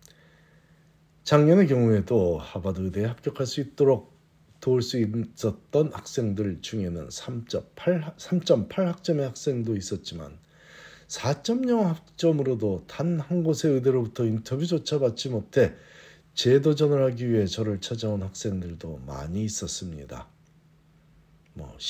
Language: Korean